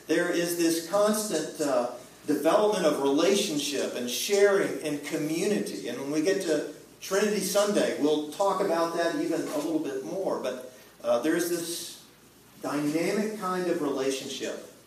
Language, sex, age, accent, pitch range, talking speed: English, male, 50-69, American, 120-165 Hz, 150 wpm